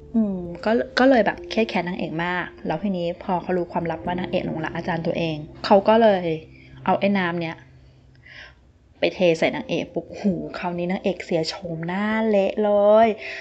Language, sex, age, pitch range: Thai, female, 20-39, 165-215 Hz